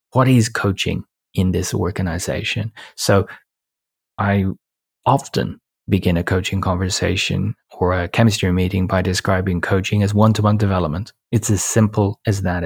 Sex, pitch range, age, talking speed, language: male, 95-115 Hz, 30-49, 135 wpm, English